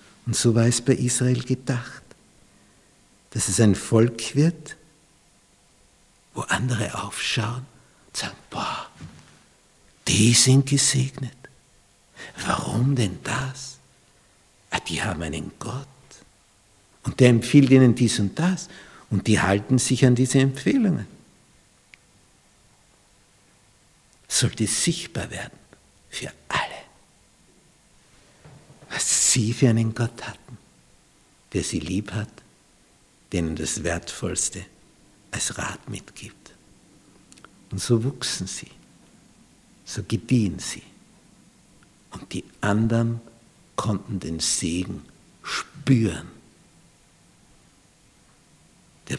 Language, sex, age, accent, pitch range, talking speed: German, male, 60-79, Austrian, 100-130 Hz, 95 wpm